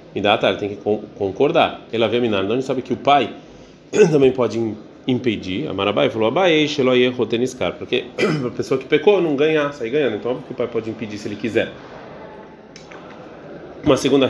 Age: 30-49